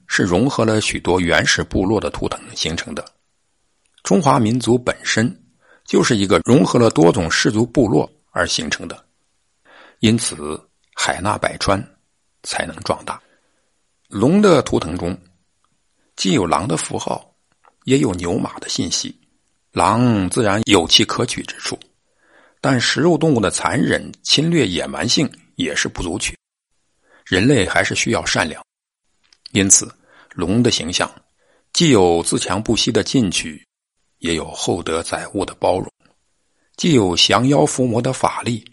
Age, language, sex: 60-79, Chinese, male